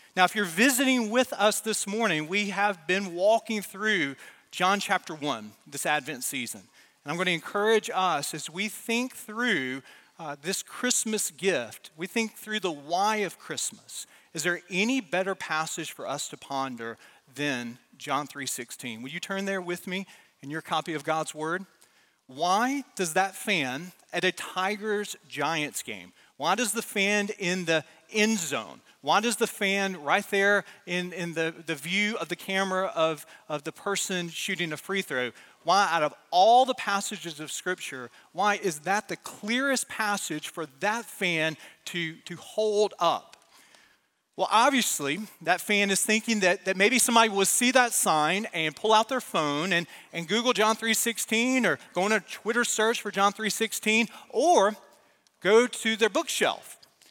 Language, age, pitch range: English, 40-59, 165-220 Hz